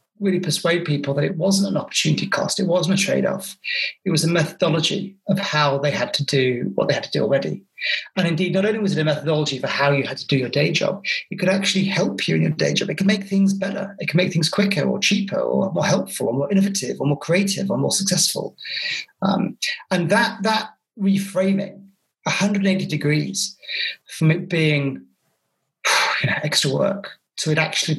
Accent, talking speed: British, 200 wpm